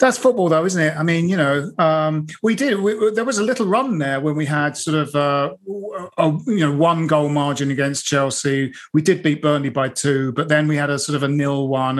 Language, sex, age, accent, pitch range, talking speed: English, male, 40-59, British, 135-190 Hz, 245 wpm